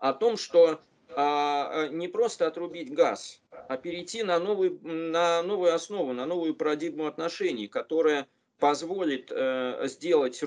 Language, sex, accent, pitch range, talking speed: Russian, male, native, 130-170 Hz, 120 wpm